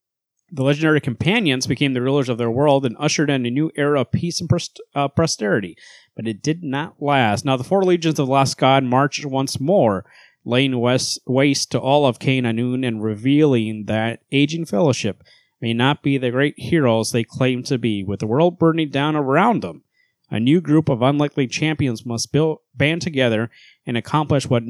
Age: 30-49